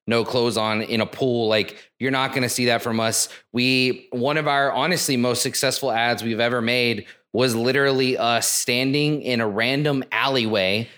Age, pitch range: 20-39, 115-140 Hz